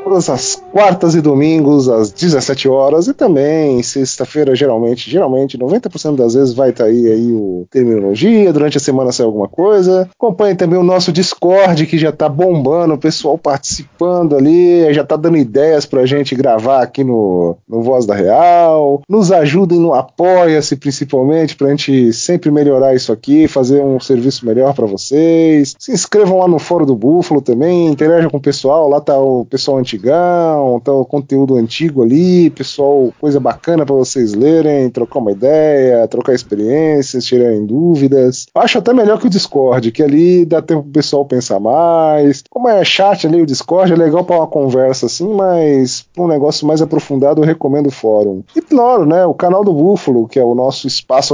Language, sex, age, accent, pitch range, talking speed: Portuguese, male, 20-39, Brazilian, 130-165 Hz, 180 wpm